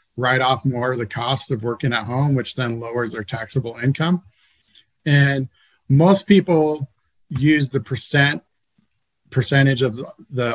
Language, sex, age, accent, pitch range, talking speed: English, male, 40-59, American, 115-135 Hz, 140 wpm